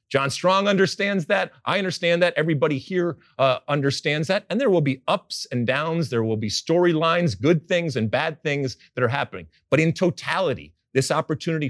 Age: 40-59